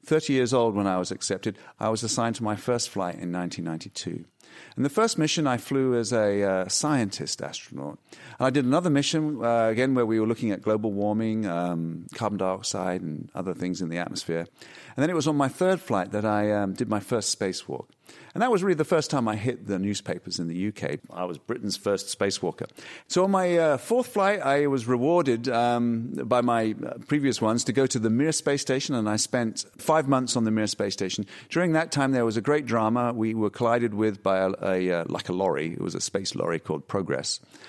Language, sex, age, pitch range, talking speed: English, male, 40-59, 100-135 Hz, 225 wpm